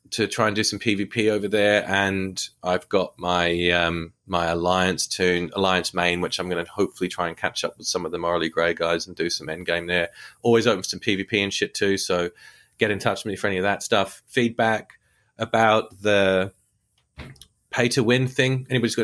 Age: 30-49